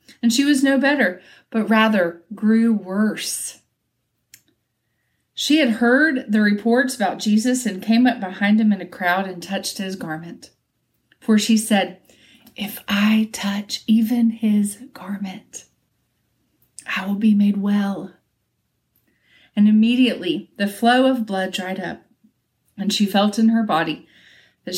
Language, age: English, 40-59